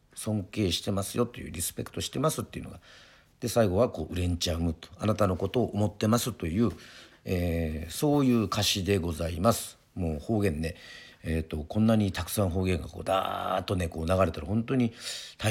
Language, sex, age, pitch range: Japanese, male, 50-69, 85-115 Hz